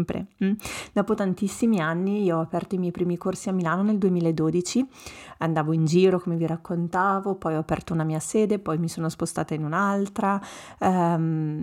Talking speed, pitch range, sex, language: 175 wpm, 170-200 Hz, female, Italian